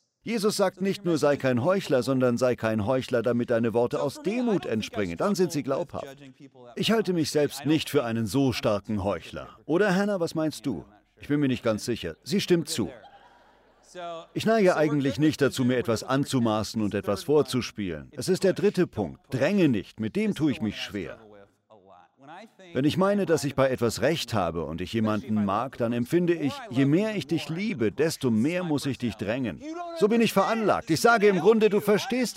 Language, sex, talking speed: German, male, 195 wpm